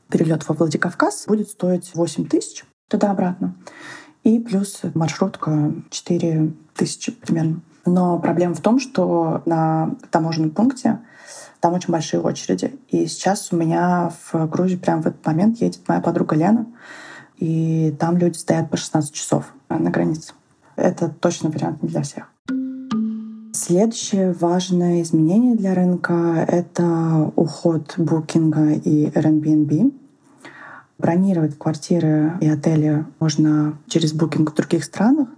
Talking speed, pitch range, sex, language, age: 125 wpm, 155-185 Hz, female, Russian, 20-39